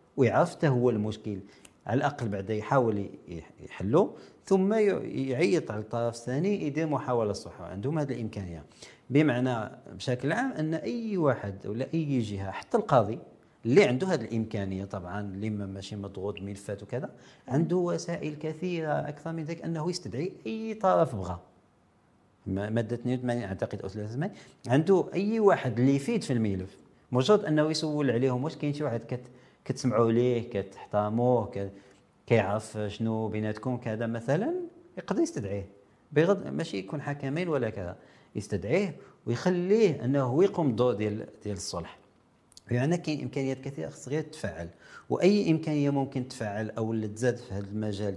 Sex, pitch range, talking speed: male, 105-150 Hz, 140 wpm